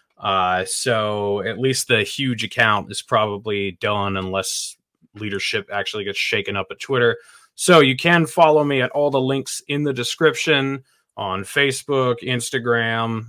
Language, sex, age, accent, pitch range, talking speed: English, male, 20-39, American, 110-130 Hz, 150 wpm